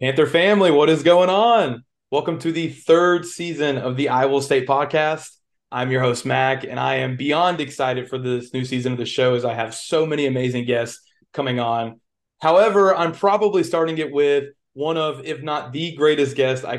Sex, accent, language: male, American, English